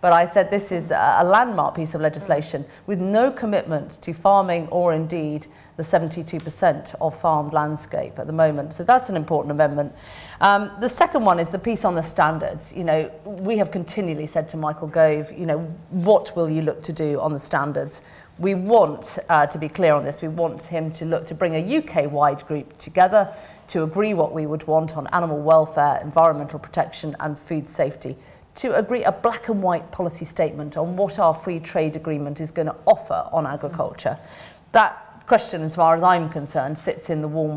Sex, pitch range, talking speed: female, 155-180 Hz, 200 wpm